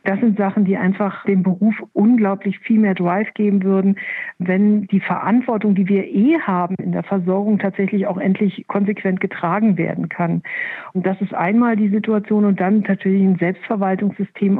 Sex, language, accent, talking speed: female, German, German, 170 wpm